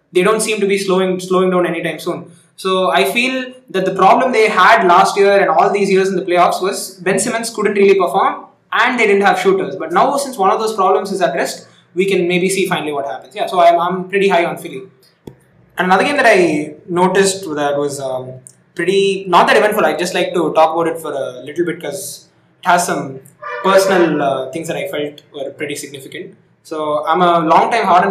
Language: English